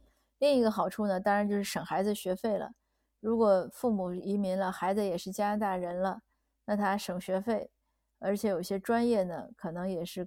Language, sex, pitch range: Chinese, female, 185-220 Hz